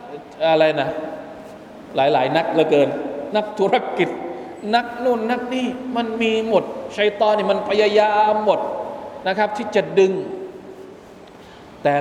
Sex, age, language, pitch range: male, 20-39, Thai, 175-225 Hz